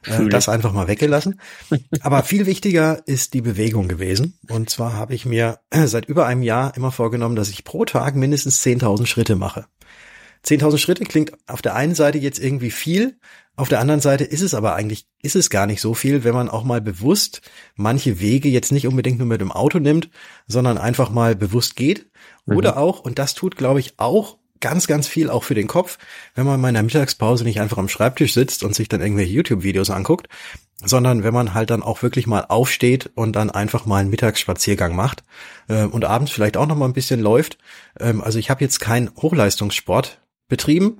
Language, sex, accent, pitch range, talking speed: German, male, German, 105-140 Hz, 205 wpm